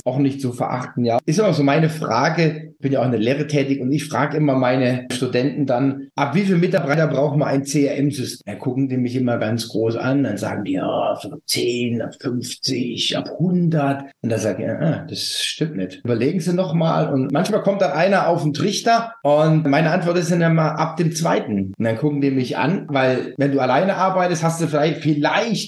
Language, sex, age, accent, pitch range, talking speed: German, male, 40-59, German, 125-155 Hz, 220 wpm